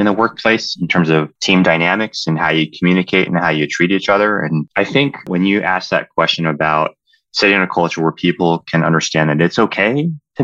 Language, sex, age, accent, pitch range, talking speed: English, male, 20-39, American, 80-105 Hz, 225 wpm